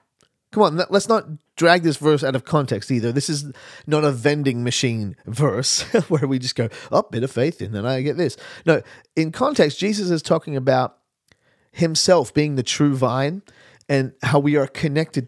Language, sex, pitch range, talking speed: English, male, 130-180 Hz, 195 wpm